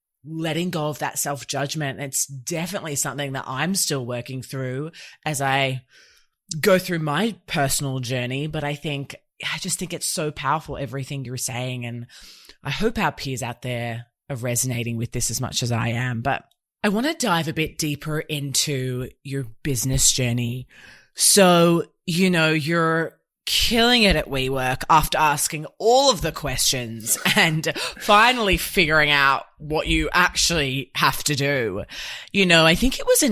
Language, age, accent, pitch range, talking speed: English, 20-39, Australian, 130-165 Hz, 165 wpm